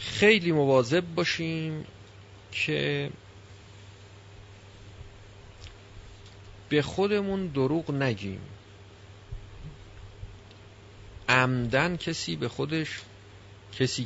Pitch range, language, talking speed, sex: 100-130 Hz, Persian, 55 wpm, male